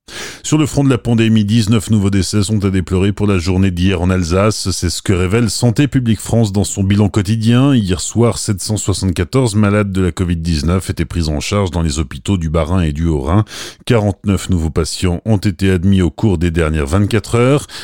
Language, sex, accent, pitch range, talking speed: French, male, French, 90-115 Hz, 200 wpm